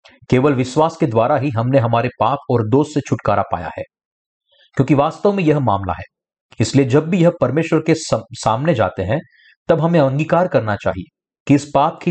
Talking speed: 190 wpm